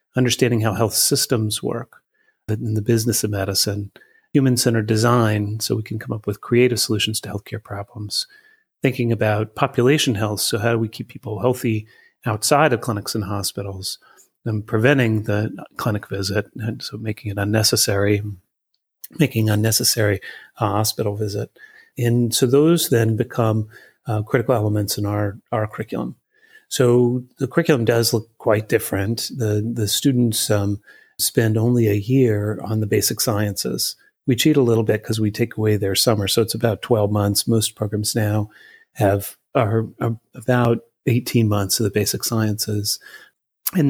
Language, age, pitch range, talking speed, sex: English, 30-49, 105-125 Hz, 155 wpm, male